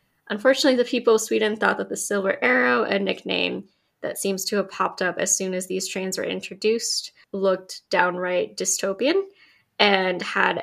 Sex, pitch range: female, 190-220 Hz